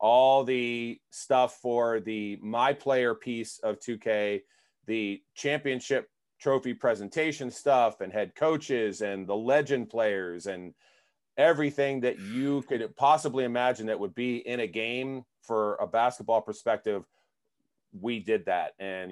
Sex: male